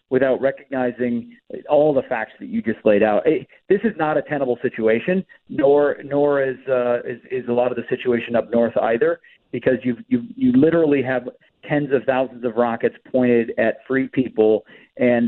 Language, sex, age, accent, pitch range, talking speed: English, male, 40-59, American, 120-155 Hz, 180 wpm